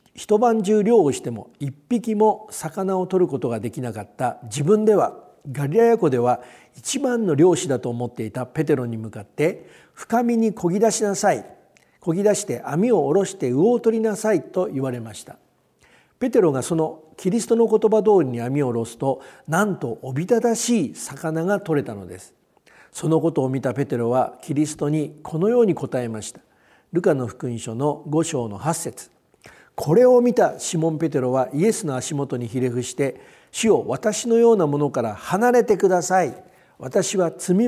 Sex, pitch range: male, 130-215 Hz